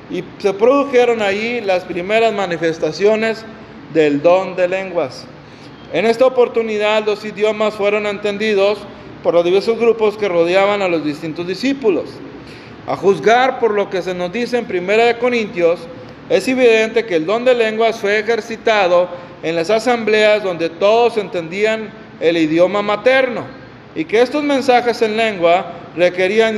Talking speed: 145 wpm